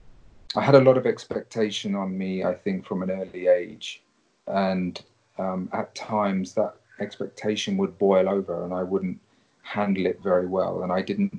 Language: English